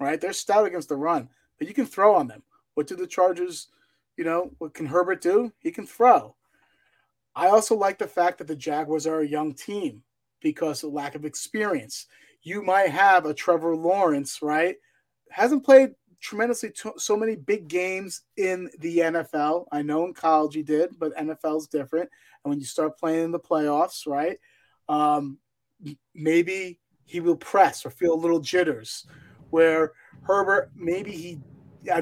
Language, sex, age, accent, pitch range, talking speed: English, male, 30-49, American, 150-190 Hz, 175 wpm